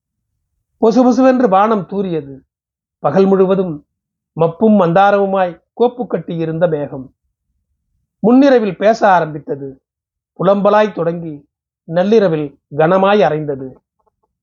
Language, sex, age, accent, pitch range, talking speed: Tamil, male, 40-59, native, 150-210 Hz, 75 wpm